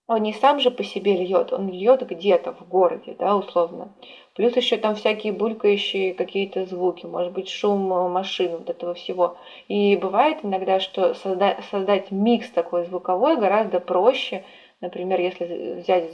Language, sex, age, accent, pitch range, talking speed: Russian, female, 20-39, native, 180-220 Hz, 155 wpm